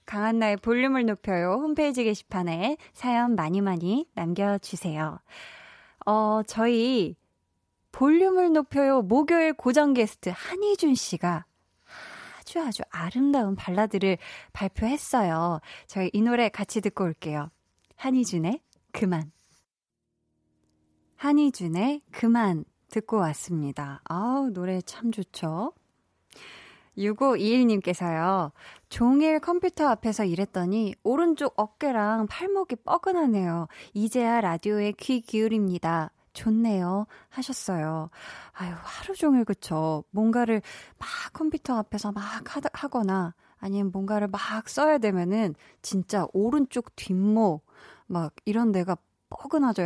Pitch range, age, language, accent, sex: 180-255 Hz, 20-39, Korean, native, female